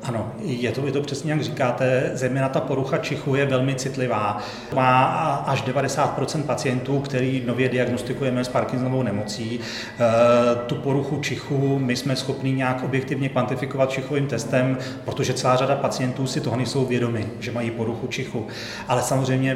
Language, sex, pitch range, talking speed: Czech, male, 120-135 Hz, 155 wpm